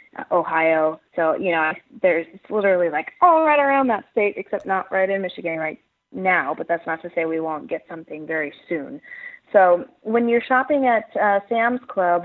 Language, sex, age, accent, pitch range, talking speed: English, female, 30-49, American, 165-190 Hz, 185 wpm